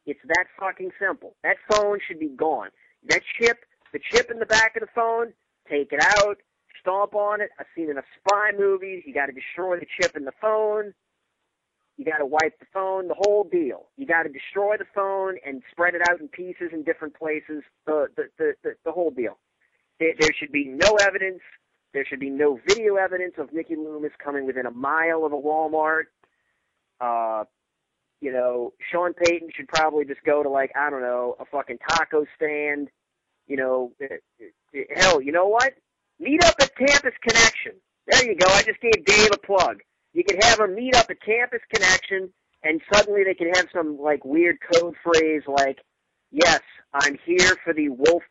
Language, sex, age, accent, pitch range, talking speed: English, male, 50-69, American, 145-210 Hz, 195 wpm